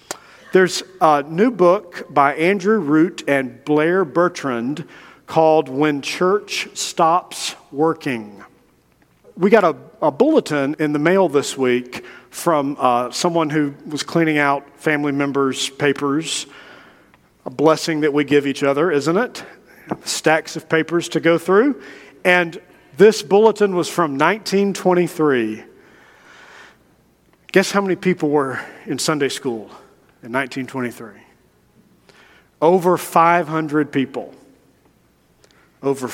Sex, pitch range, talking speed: male, 140-195 Hz, 115 wpm